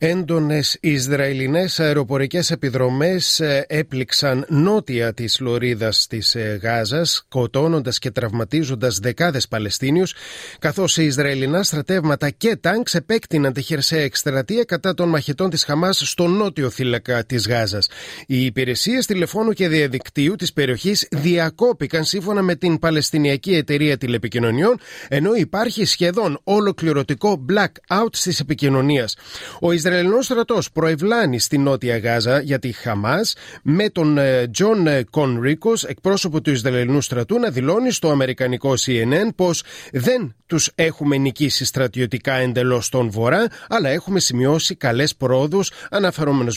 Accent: native